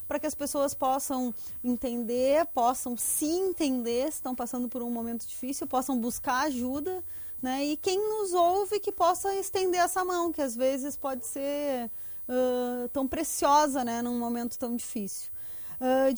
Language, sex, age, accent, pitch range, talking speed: Portuguese, female, 30-49, Brazilian, 235-295 Hz, 155 wpm